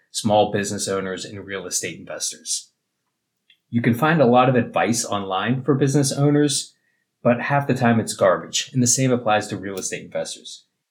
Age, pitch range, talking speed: 30-49, 105-130 Hz, 175 wpm